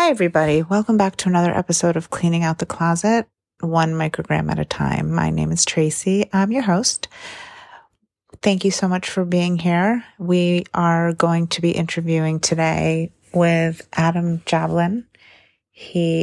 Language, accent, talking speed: English, American, 155 wpm